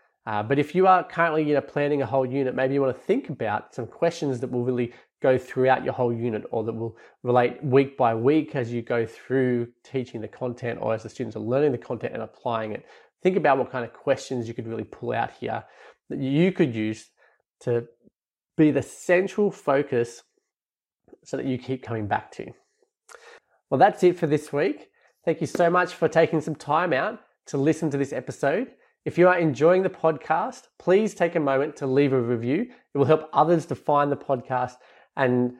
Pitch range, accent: 125-155 Hz, Australian